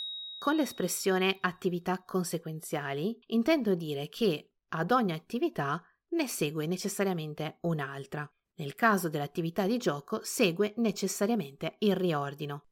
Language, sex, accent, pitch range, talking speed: Italian, female, native, 155-210 Hz, 110 wpm